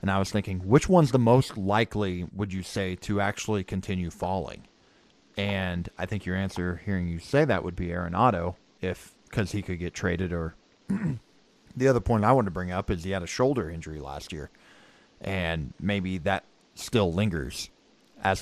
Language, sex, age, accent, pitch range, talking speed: English, male, 30-49, American, 90-110 Hz, 185 wpm